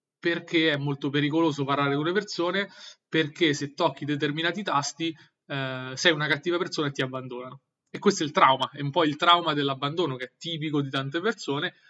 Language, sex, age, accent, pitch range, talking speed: Italian, male, 30-49, native, 140-165 Hz, 190 wpm